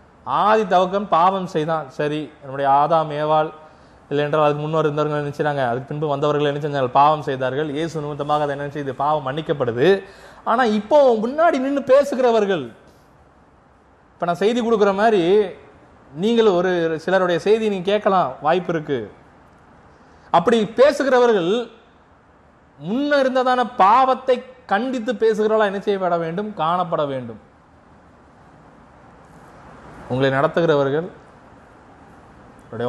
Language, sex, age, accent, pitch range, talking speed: Tamil, male, 30-49, native, 145-225 Hz, 100 wpm